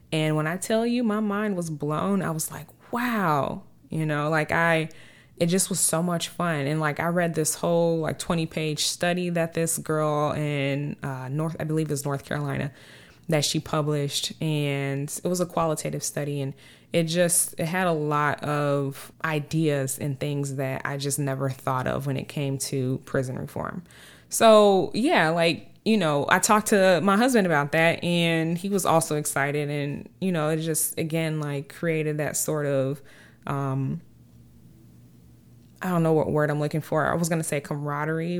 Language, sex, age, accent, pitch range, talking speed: English, female, 20-39, American, 140-170 Hz, 185 wpm